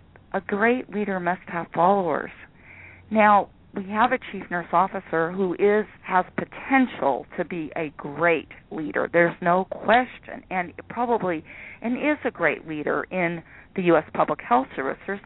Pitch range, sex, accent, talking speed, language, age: 165-215 Hz, female, American, 155 wpm, English, 40-59